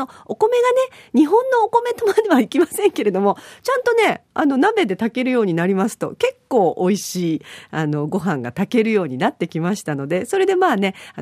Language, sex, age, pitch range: Japanese, female, 40-59, 170-270 Hz